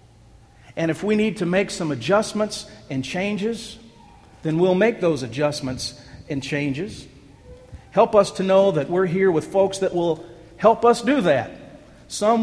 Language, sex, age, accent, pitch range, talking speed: English, male, 50-69, American, 135-185 Hz, 160 wpm